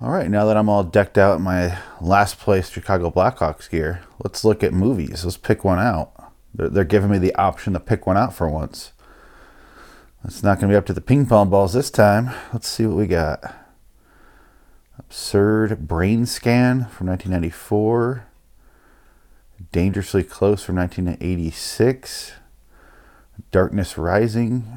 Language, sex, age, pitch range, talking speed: English, male, 30-49, 90-110 Hz, 155 wpm